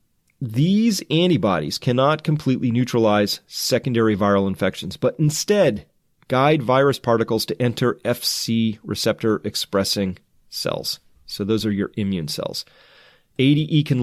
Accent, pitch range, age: American, 110-150 Hz, 30-49